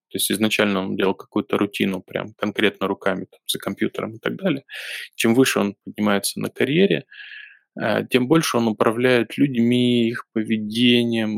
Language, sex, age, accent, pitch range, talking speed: Russian, male, 20-39, native, 105-120 Hz, 150 wpm